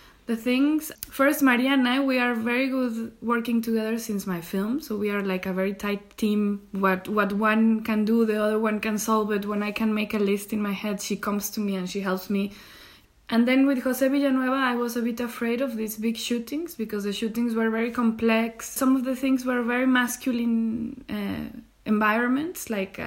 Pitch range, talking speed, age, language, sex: 210-255 Hz, 210 wpm, 20-39, English, female